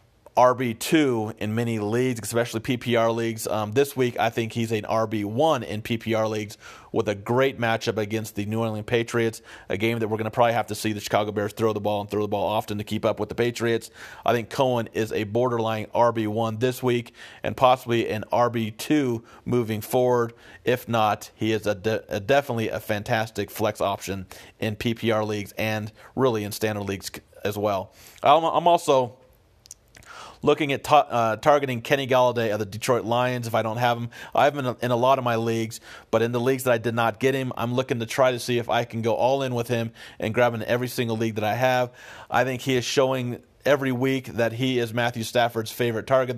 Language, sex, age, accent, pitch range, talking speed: English, male, 40-59, American, 110-125 Hz, 215 wpm